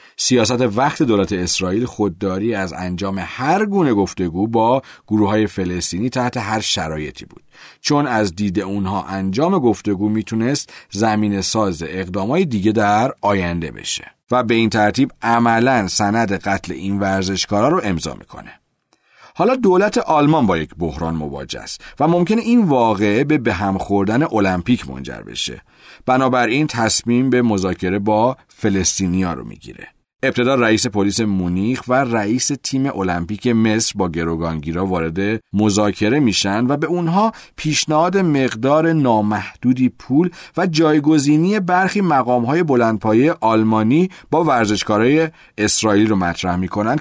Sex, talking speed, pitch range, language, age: male, 130 wpm, 95-135 Hz, Persian, 40-59